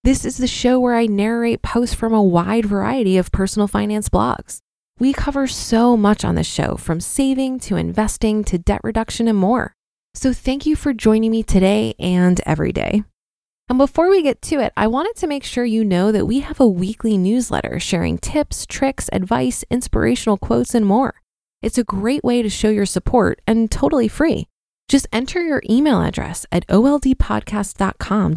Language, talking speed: English, 185 wpm